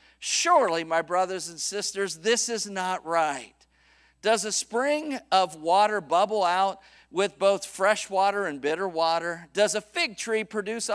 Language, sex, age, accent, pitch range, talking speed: English, male, 50-69, American, 165-220 Hz, 155 wpm